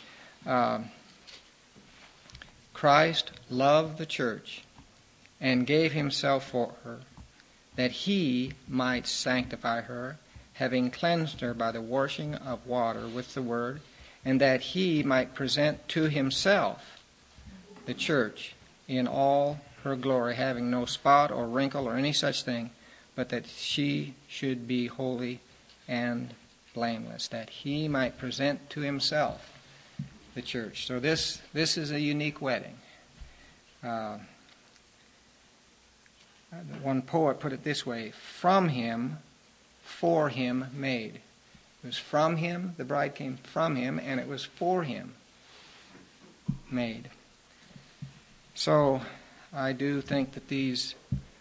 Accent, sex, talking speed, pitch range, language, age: American, male, 120 wpm, 125-145 Hz, English, 50-69